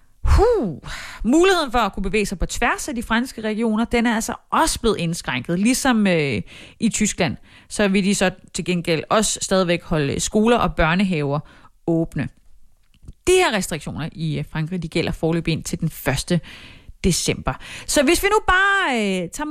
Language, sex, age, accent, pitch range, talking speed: Danish, female, 30-49, native, 180-265 Hz, 170 wpm